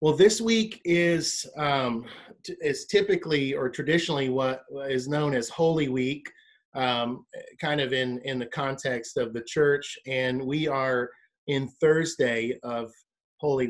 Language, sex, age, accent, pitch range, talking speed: English, male, 30-49, American, 130-165 Hz, 145 wpm